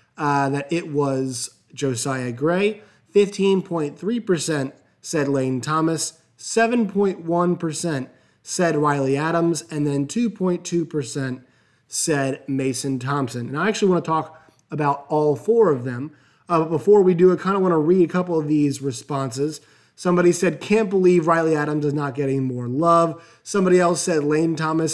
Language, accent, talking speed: English, American, 150 wpm